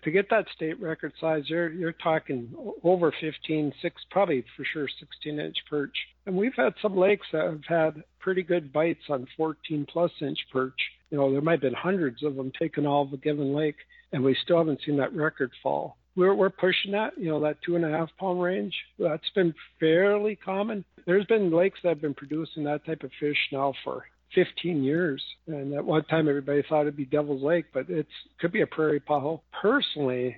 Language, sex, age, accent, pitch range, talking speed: English, male, 50-69, American, 140-170 Hz, 205 wpm